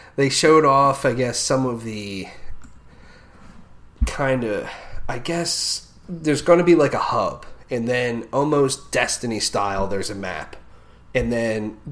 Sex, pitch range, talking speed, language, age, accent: male, 100-125 Hz, 145 wpm, English, 30-49, American